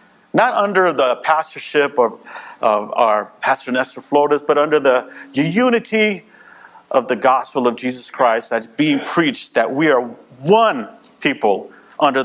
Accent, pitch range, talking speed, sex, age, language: American, 155-225 Hz, 140 wpm, male, 50-69, English